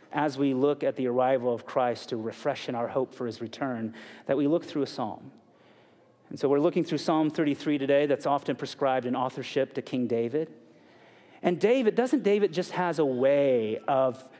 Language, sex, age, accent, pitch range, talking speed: English, male, 40-59, American, 135-195 Hz, 195 wpm